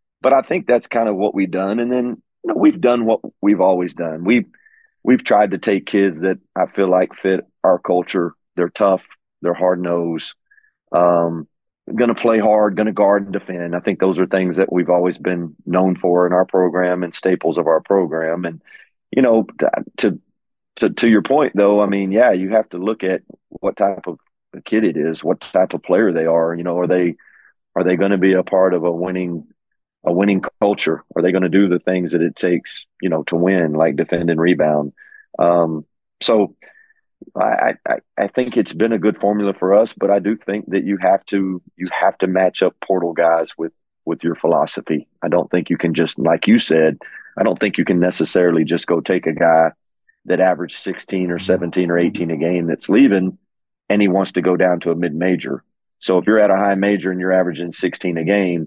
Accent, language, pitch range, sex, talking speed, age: American, English, 85-100 Hz, male, 220 wpm, 40-59